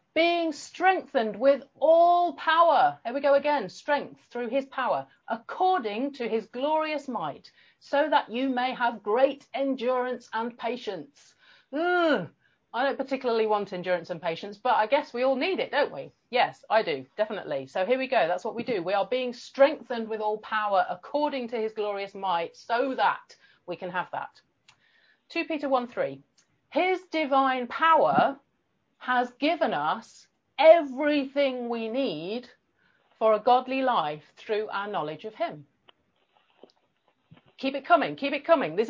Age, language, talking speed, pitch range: 40-59, English, 155 wpm, 225-310 Hz